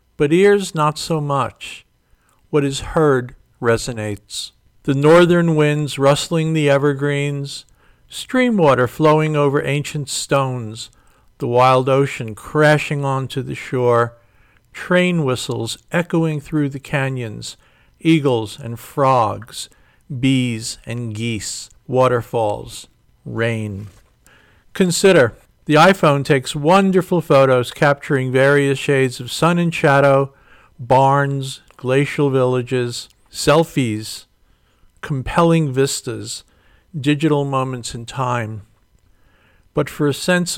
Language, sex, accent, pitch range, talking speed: English, male, American, 120-150 Hz, 100 wpm